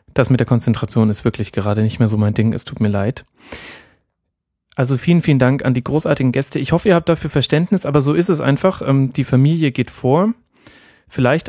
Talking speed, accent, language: 210 wpm, German, German